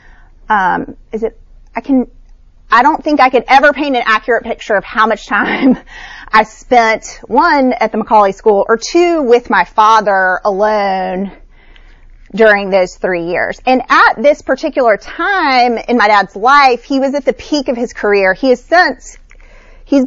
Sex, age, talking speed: female, 30-49, 170 wpm